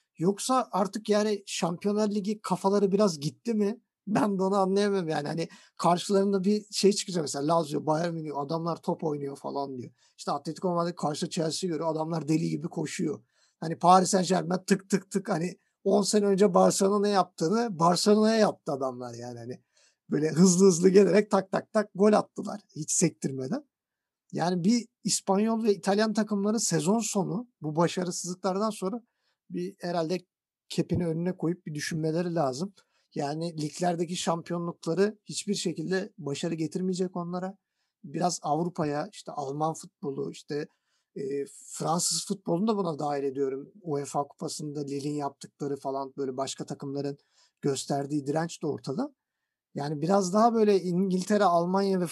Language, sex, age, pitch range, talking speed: Turkish, male, 50-69, 155-200 Hz, 145 wpm